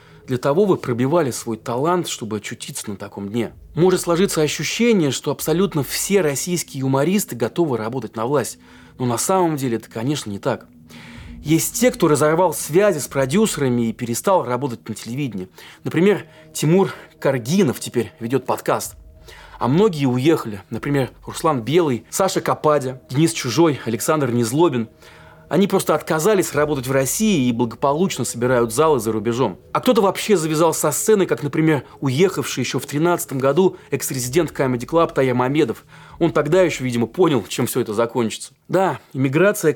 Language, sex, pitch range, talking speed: Russian, male, 120-170 Hz, 150 wpm